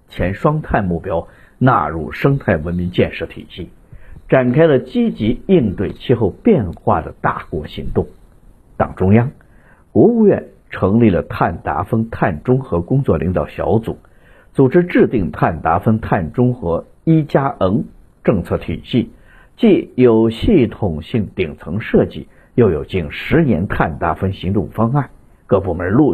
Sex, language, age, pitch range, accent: male, Chinese, 50-69, 95-135 Hz, native